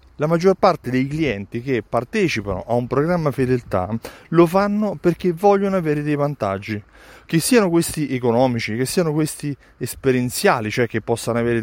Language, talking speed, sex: Italian, 155 wpm, male